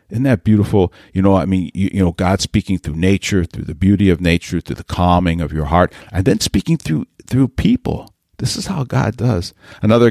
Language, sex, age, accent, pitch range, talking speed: English, male, 50-69, American, 85-105 Hz, 220 wpm